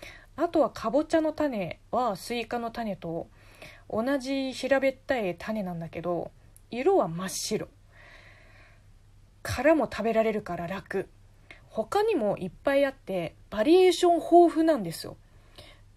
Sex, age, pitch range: female, 20-39, 170-265 Hz